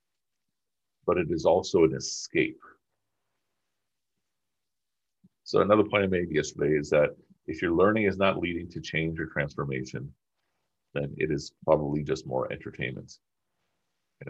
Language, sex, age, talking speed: English, male, 50-69, 135 wpm